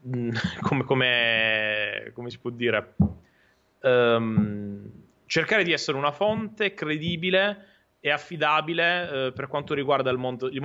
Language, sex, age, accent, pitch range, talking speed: Italian, male, 20-39, native, 120-145 Hz, 125 wpm